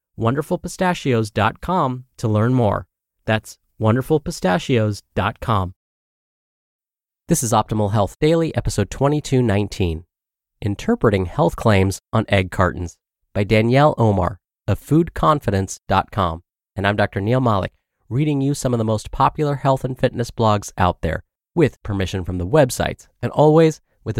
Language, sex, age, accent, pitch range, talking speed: English, male, 30-49, American, 95-135 Hz, 125 wpm